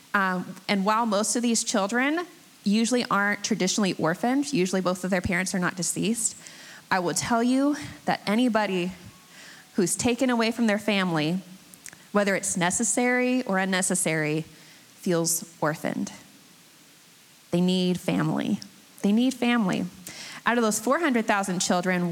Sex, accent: female, American